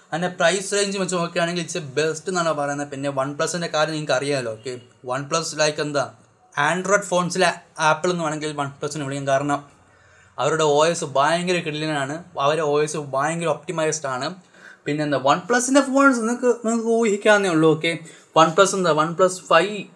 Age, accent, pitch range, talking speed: 20-39, native, 145-180 Hz, 145 wpm